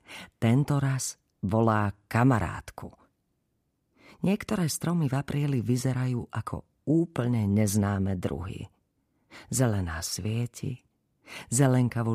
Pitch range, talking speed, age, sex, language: 105-145 Hz, 80 wpm, 40-59, female, Slovak